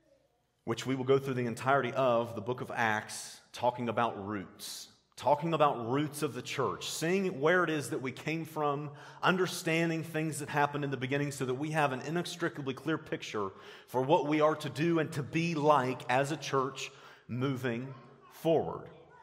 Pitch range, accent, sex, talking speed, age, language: 135-165 Hz, American, male, 185 wpm, 40-59, English